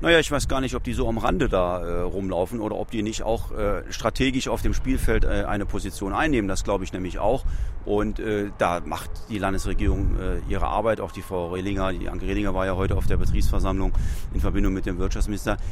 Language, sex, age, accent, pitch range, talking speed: German, male, 40-59, German, 100-120 Hz, 225 wpm